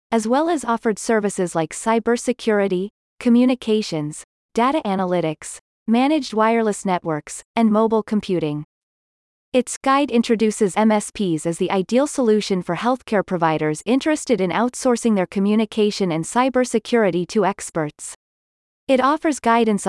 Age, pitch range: 30-49, 185-240 Hz